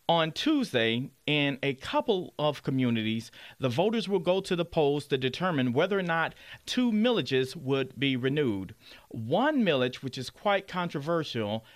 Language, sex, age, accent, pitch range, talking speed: English, male, 40-59, American, 130-180 Hz, 155 wpm